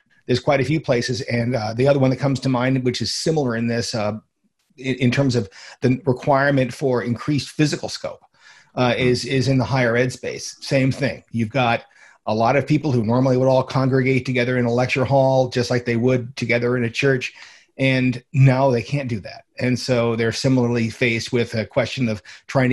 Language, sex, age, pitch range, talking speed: English, male, 40-59, 120-135 Hz, 210 wpm